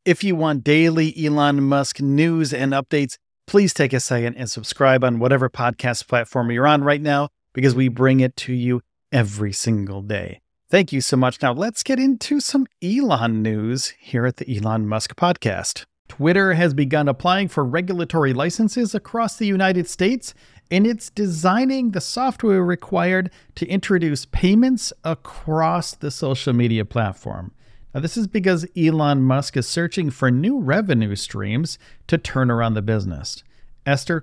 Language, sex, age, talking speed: English, male, 40-59, 160 wpm